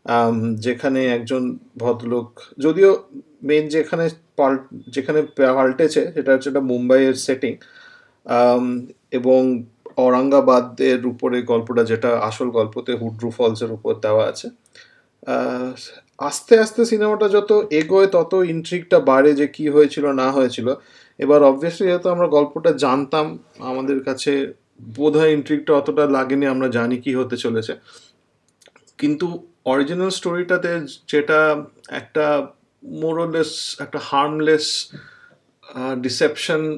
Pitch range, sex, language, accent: 130-175 Hz, male, Bengali, native